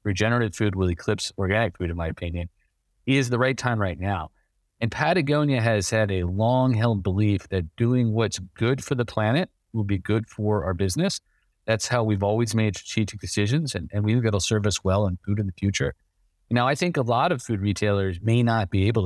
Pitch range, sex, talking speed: 90-115 Hz, male, 215 wpm